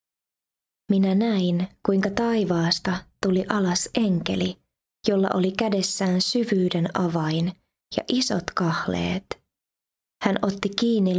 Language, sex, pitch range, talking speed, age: Finnish, female, 170-200 Hz, 95 wpm, 20-39